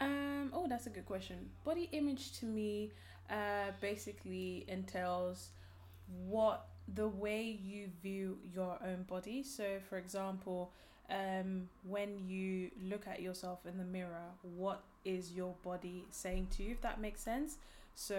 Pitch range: 180-210 Hz